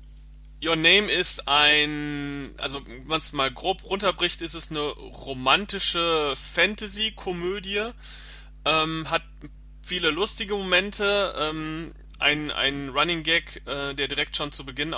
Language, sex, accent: German, male, German